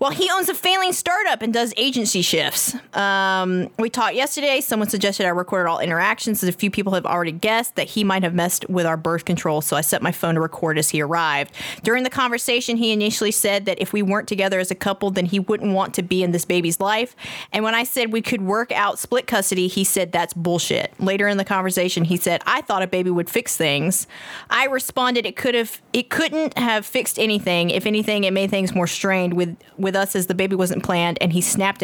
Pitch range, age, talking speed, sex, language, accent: 180-230 Hz, 20-39, 230 wpm, female, English, American